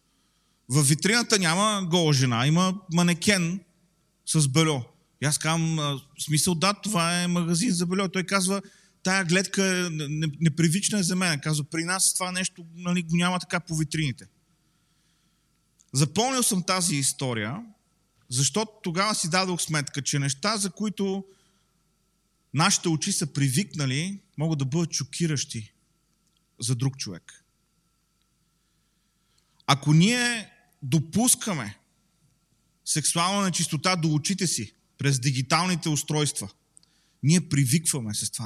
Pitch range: 150-185 Hz